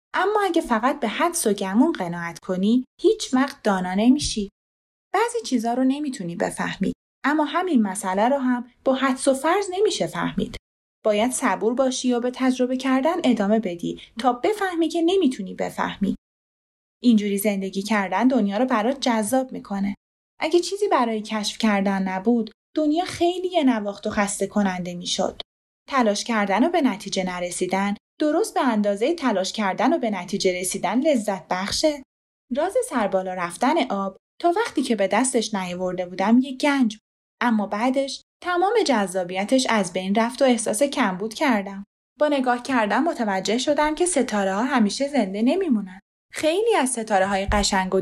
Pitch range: 200-285 Hz